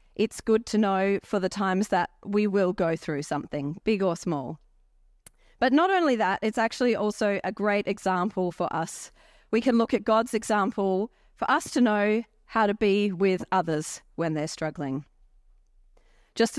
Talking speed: 170 wpm